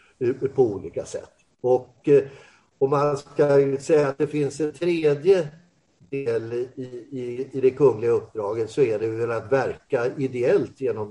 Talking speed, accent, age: 150 wpm, native, 50-69